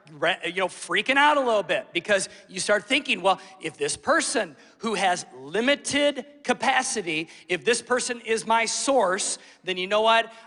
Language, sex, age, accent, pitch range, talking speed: English, male, 40-59, American, 185-245 Hz, 165 wpm